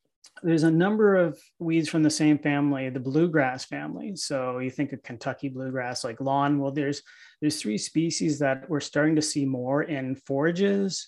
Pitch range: 135-165 Hz